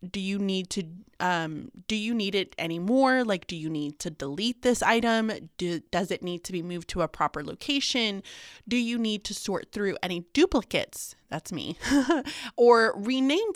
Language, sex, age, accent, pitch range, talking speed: English, female, 20-39, American, 175-230 Hz, 180 wpm